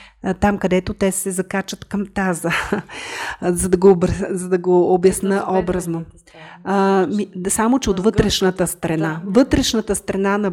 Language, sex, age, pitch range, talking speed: Bulgarian, female, 30-49, 180-220 Hz, 140 wpm